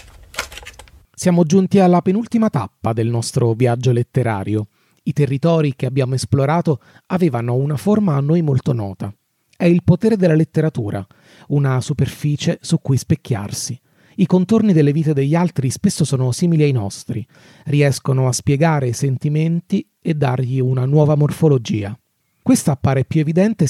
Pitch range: 125-160 Hz